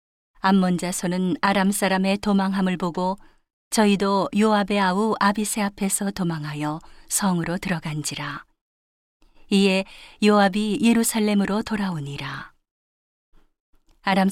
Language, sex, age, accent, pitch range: Korean, female, 40-59, native, 170-205 Hz